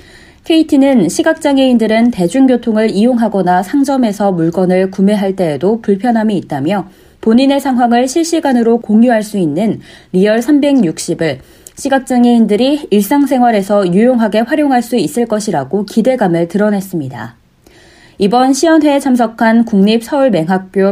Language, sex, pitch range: Korean, female, 185-250 Hz